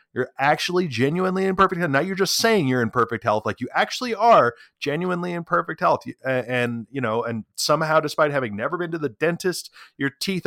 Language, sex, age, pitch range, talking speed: English, male, 30-49, 130-180 Hz, 205 wpm